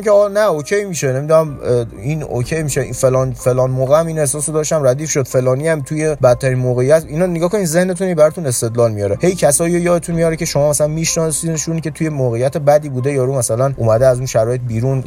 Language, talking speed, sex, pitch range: Persian, 220 wpm, male, 130-175 Hz